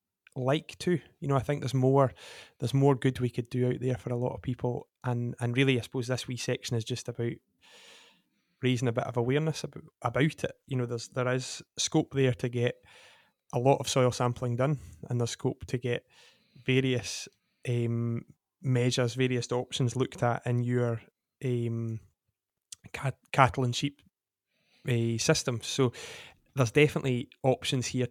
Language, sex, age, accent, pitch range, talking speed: English, male, 20-39, British, 120-130 Hz, 170 wpm